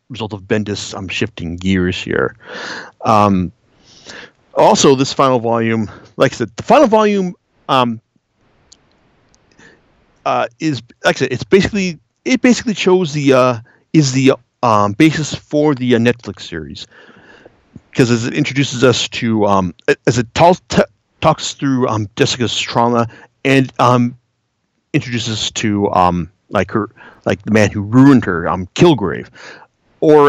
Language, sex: English, male